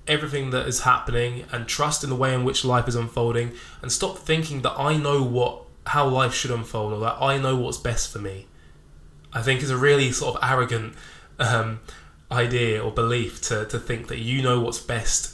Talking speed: 205 wpm